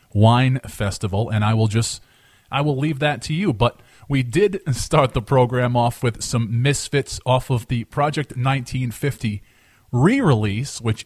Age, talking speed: 30-49, 155 wpm